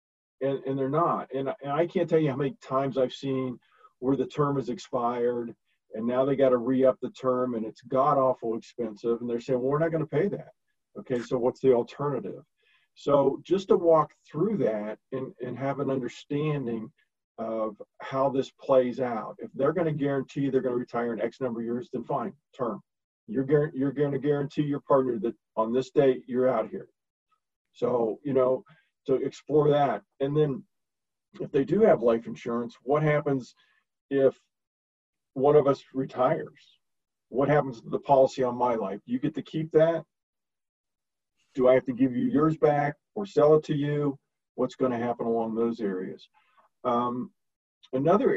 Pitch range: 120-145 Hz